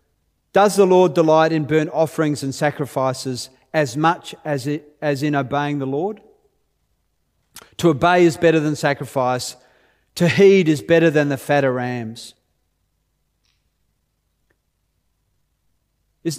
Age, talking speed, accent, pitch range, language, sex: 40-59, 115 wpm, Australian, 145-185 Hz, English, male